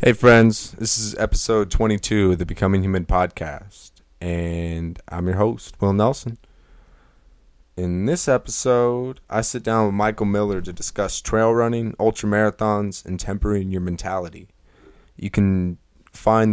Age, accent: 20-39, American